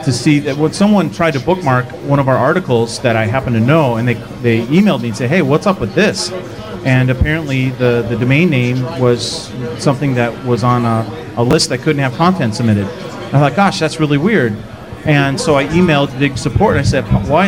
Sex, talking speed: male, 225 wpm